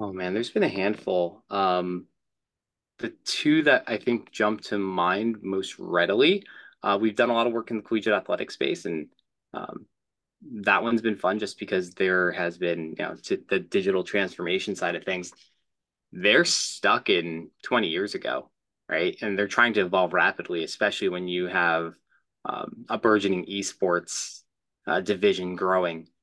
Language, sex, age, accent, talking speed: English, male, 20-39, American, 165 wpm